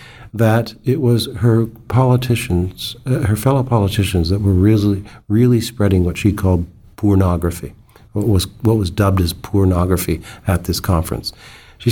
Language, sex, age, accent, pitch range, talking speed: English, male, 50-69, American, 100-120 Hz, 145 wpm